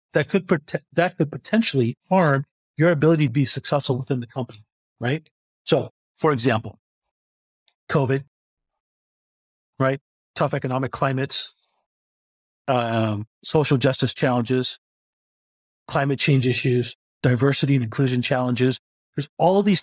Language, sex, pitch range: English, male, 125-155 Hz